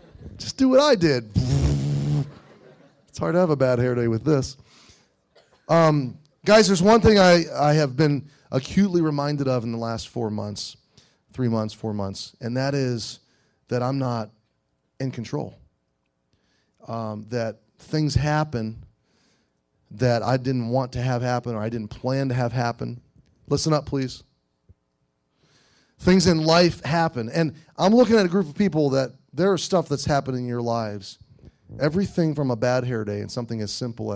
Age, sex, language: 30-49, male, English